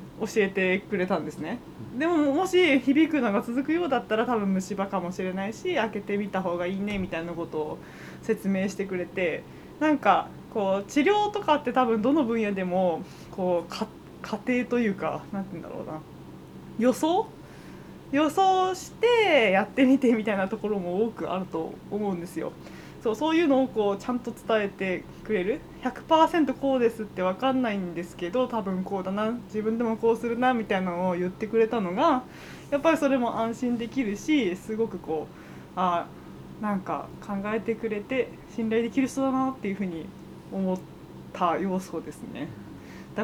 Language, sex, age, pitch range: Japanese, female, 20-39, 190-260 Hz